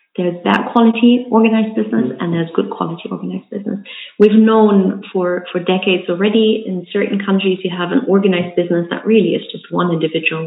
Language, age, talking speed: English, 30-49, 180 wpm